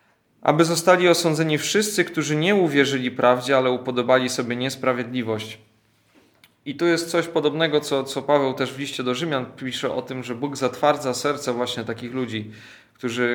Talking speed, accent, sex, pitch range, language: 160 wpm, native, male, 120-145 Hz, Polish